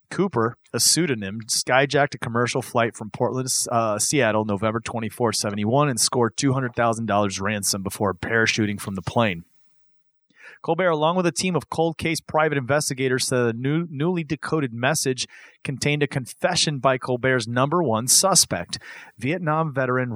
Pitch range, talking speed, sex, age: 115-155 Hz, 145 wpm, male, 30-49